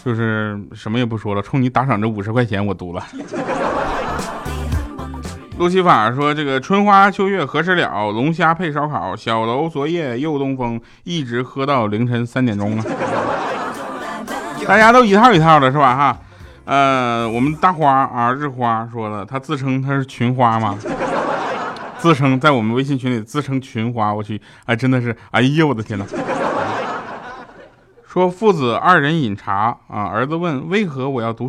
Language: Chinese